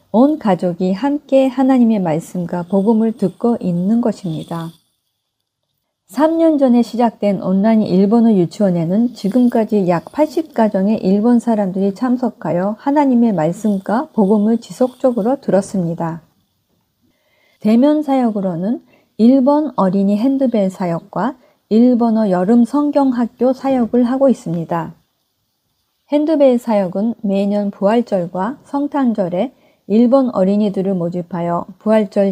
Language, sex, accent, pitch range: Korean, female, native, 185-255 Hz